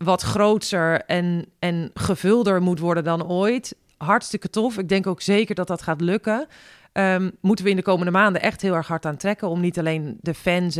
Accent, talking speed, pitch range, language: Dutch, 205 wpm, 160-195 Hz, Dutch